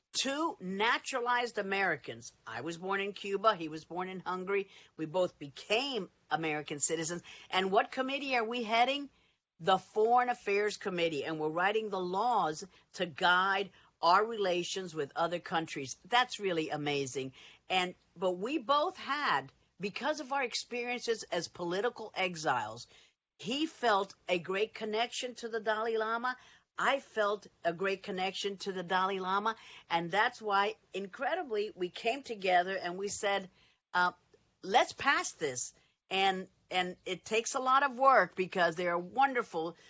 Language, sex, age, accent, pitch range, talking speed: English, female, 50-69, American, 175-220 Hz, 150 wpm